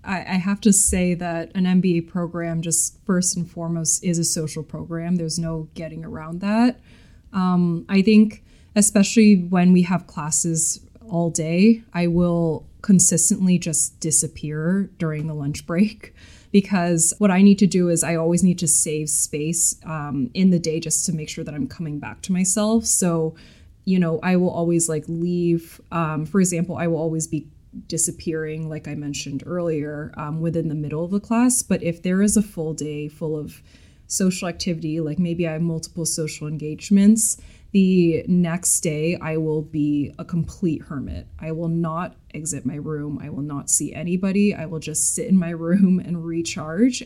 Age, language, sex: 20-39, English, female